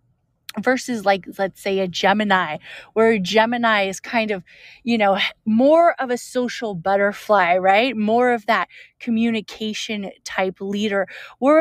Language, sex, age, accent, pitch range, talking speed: English, female, 30-49, American, 205-260 Hz, 140 wpm